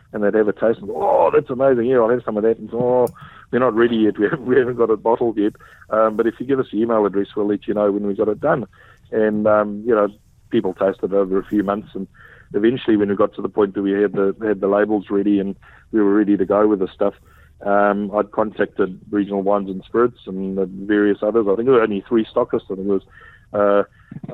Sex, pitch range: male, 100-110 Hz